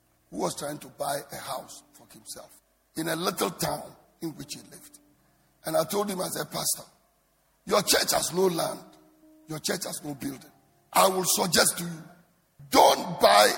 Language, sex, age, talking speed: English, male, 50-69, 175 wpm